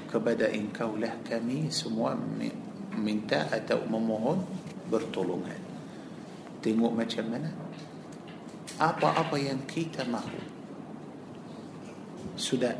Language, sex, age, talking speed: Malay, male, 50-69, 80 wpm